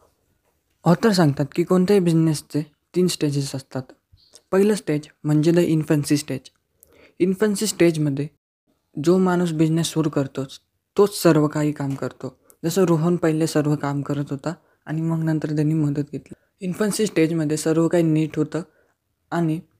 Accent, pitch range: native, 145-175 Hz